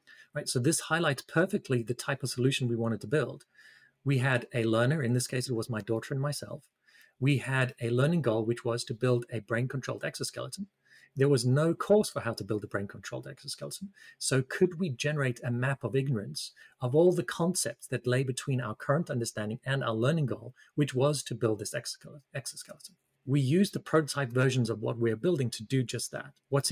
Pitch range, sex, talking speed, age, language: 120-150 Hz, male, 205 wpm, 30-49, English